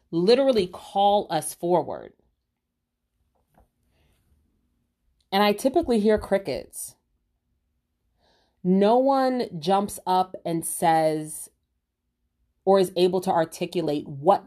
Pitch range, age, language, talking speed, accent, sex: 165-220 Hz, 30-49, English, 85 wpm, American, female